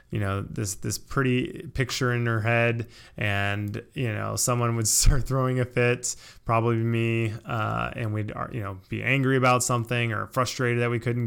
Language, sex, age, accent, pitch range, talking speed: English, male, 20-39, American, 105-125 Hz, 180 wpm